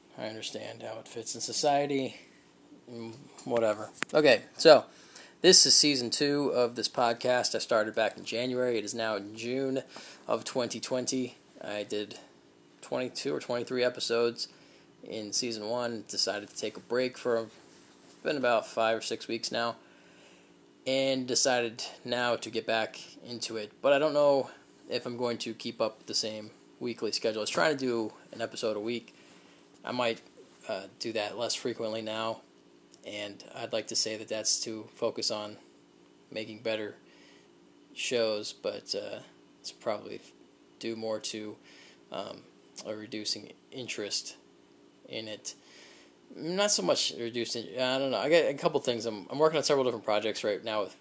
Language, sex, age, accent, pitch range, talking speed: English, male, 20-39, American, 110-125 Hz, 165 wpm